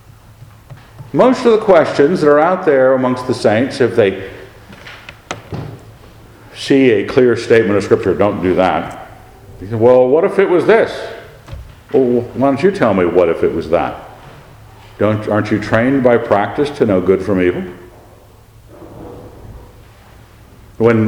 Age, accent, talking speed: 50-69, American, 150 wpm